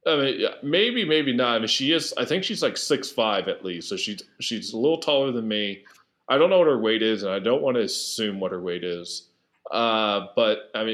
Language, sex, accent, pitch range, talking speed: English, male, American, 95-140 Hz, 245 wpm